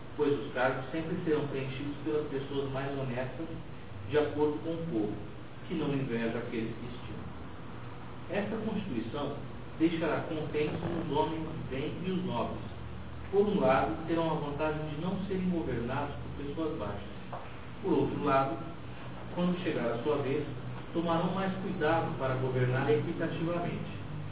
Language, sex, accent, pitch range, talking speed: Portuguese, male, Brazilian, 125-160 Hz, 145 wpm